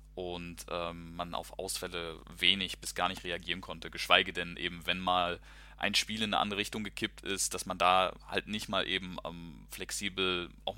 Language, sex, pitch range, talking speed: German, male, 85-100 Hz, 190 wpm